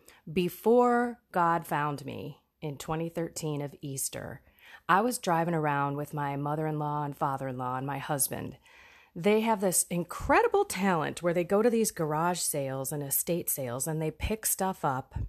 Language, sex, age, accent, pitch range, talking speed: English, female, 30-49, American, 140-190 Hz, 155 wpm